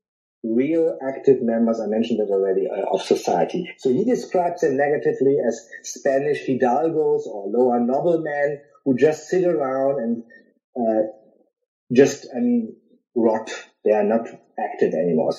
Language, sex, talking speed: English, male, 135 wpm